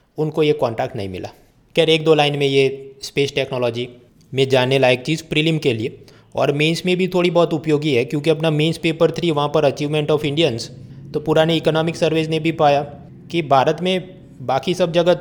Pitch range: 120-150 Hz